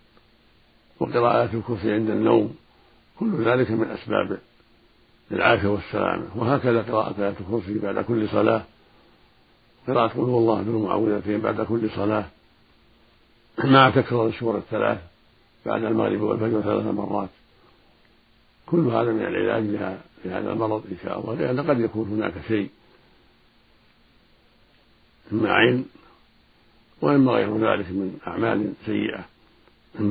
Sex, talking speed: male, 115 wpm